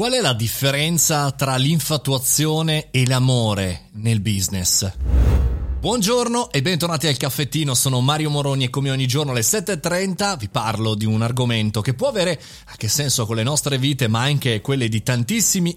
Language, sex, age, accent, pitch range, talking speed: Italian, male, 30-49, native, 115-155 Hz, 165 wpm